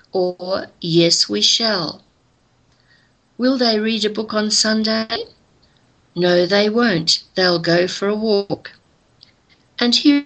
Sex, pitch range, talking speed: female, 175-230 Hz, 125 wpm